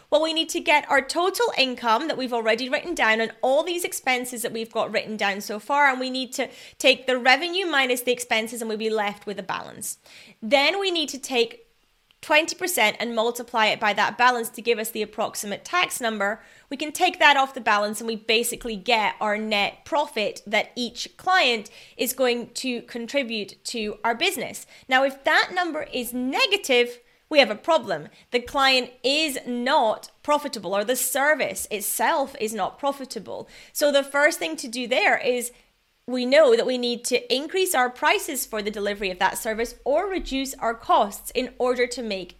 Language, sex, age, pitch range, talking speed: English, female, 30-49, 225-295 Hz, 195 wpm